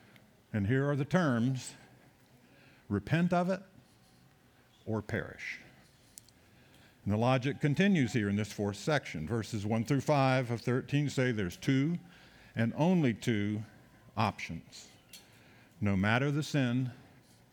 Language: English